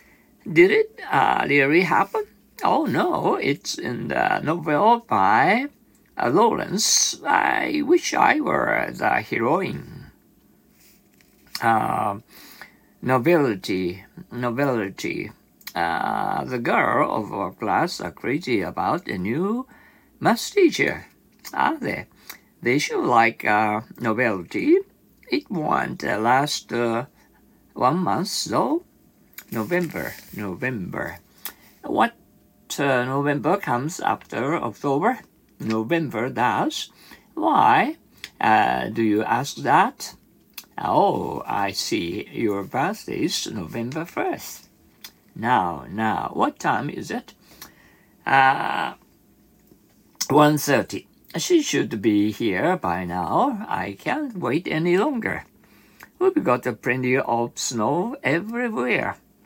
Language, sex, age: Japanese, male, 50-69